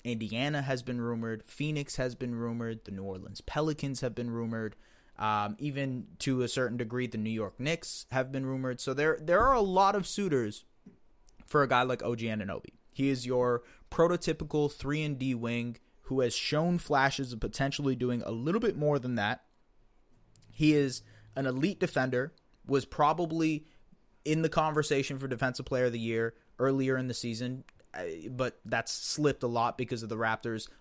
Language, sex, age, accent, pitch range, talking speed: English, male, 20-39, American, 115-145 Hz, 180 wpm